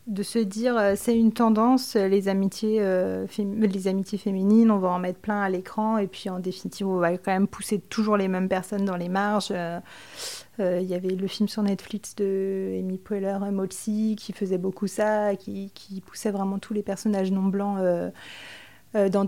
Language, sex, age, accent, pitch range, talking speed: French, female, 30-49, French, 195-220 Hz, 180 wpm